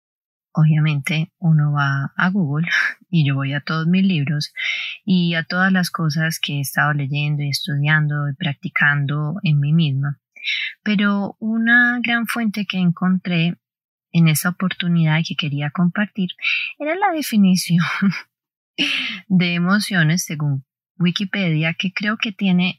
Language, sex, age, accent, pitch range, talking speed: Spanish, female, 20-39, Colombian, 155-190 Hz, 135 wpm